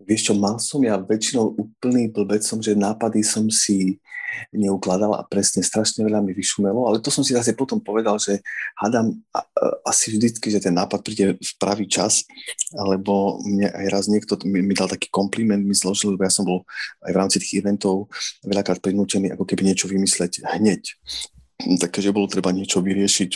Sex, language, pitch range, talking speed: male, Slovak, 95-105 Hz, 175 wpm